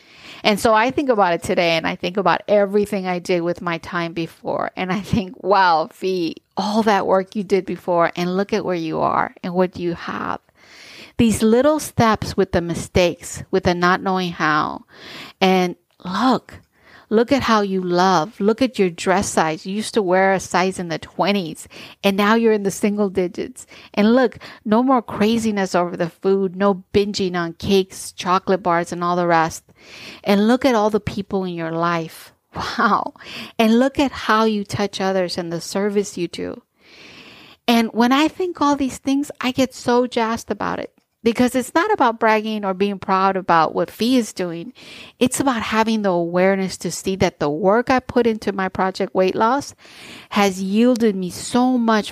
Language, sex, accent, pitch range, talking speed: English, female, American, 180-230 Hz, 190 wpm